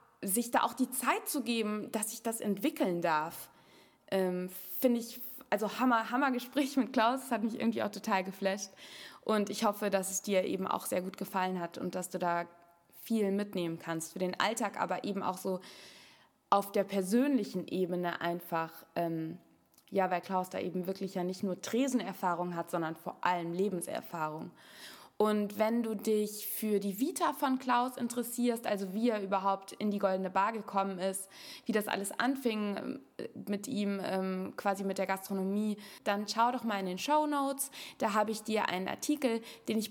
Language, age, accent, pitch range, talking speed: German, 20-39, German, 185-225 Hz, 180 wpm